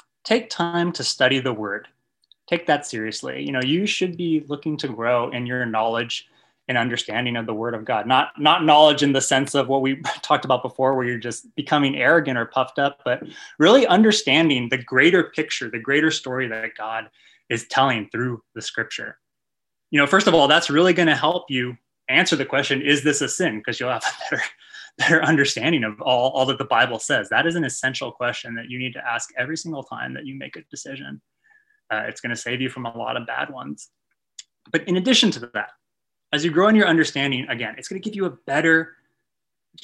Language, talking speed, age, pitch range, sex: English, 215 wpm, 20-39, 120-155 Hz, male